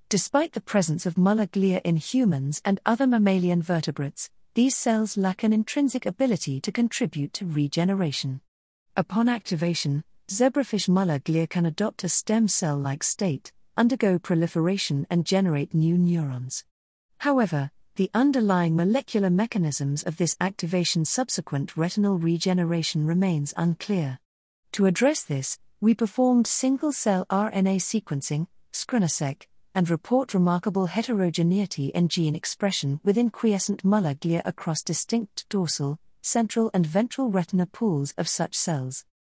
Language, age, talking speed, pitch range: English, 40-59, 125 wpm, 165-210 Hz